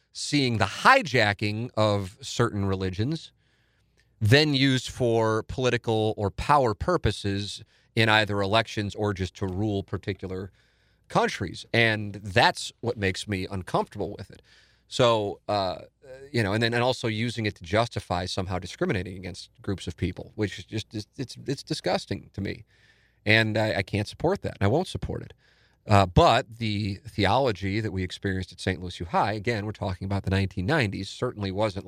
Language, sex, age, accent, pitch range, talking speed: English, male, 40-59, American, 100-120 Hz, 160 wpm